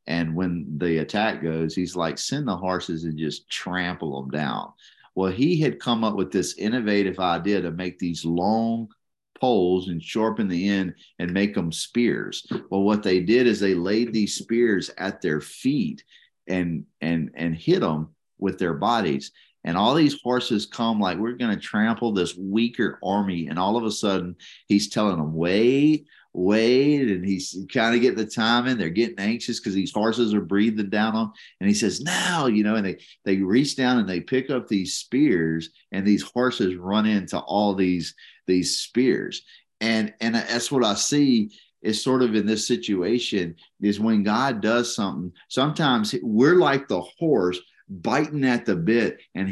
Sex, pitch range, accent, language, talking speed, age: male, 90-115 Hz, American, English, 185 wpm, 40-59